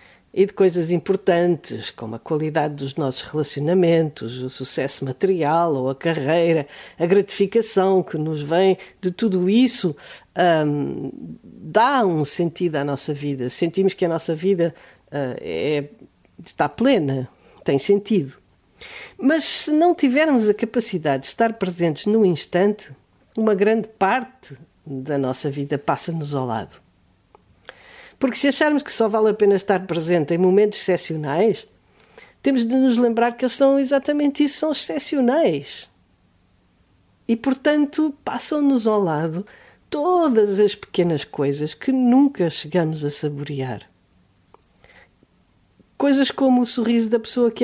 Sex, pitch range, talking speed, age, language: female, 140-230 Hz, 130 wpm, 50-69, Portuguese